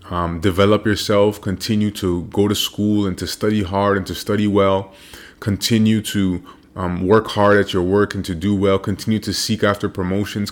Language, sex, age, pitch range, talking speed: English, male, 20-39, 95-105 Hz, 190 wpm